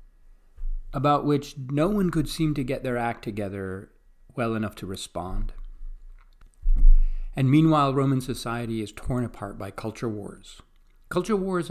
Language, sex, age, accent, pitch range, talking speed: English, male, 40-59, American, 105-135 Hz, 140 wpm